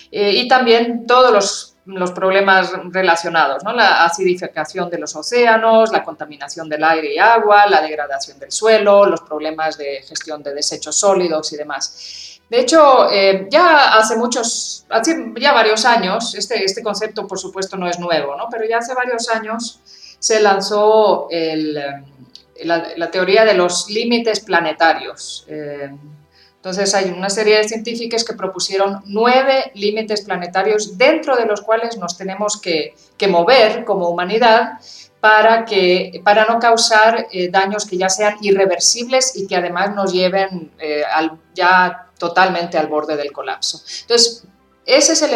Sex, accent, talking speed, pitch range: female, Spanish, 155 wpm, 170-225 Hz